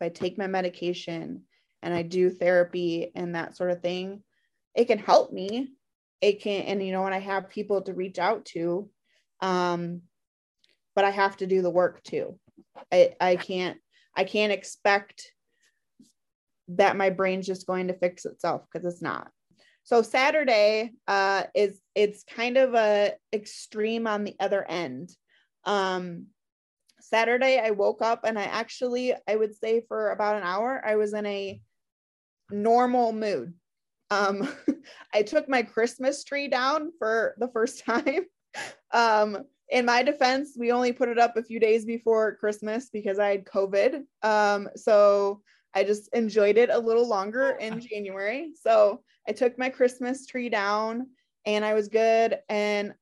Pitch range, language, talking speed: 190-235 Hz, English, 160 wpm